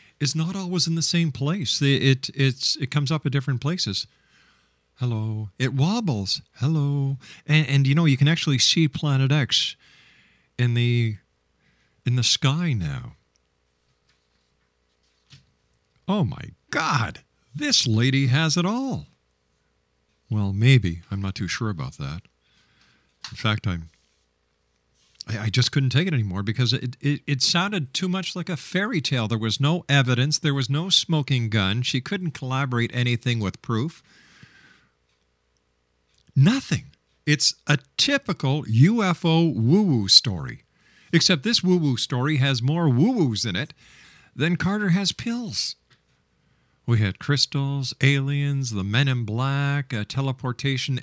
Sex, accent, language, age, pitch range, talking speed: male, American, English, 50-69, 110-150 Hz, 135 wpm